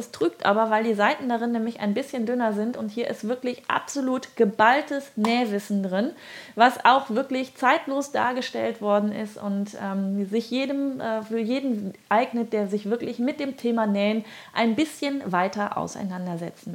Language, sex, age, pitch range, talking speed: German, female, 30-49, 215-260 Hz, 160 wpm